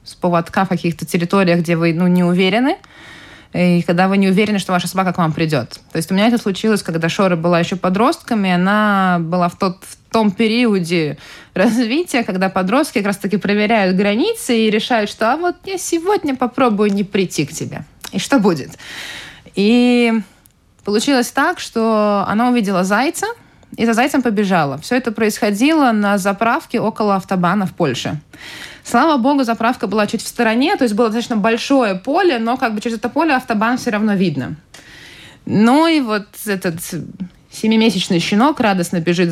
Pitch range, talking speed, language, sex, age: 175-240 Hz, 170 wpm, Russian, female, 20-39